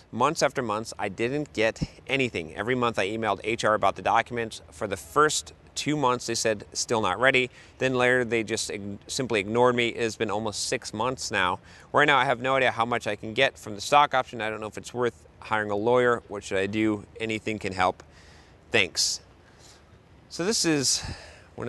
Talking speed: 205 wpm